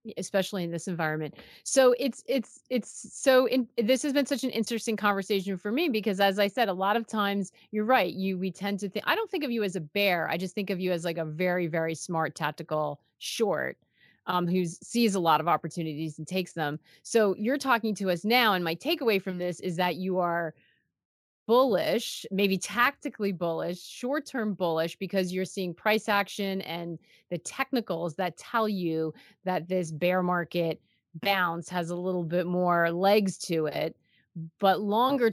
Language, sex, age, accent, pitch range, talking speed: English, female, 30-49, American, 170-205 Hz, 190 wpm